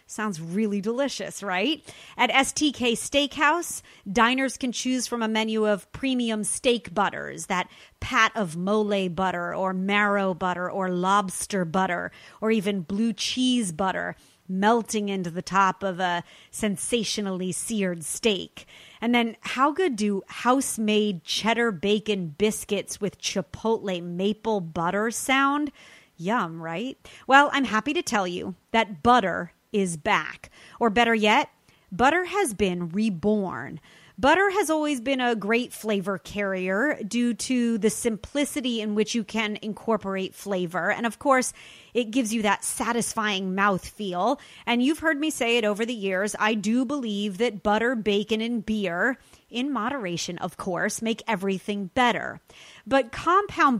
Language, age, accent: English, 30-49, American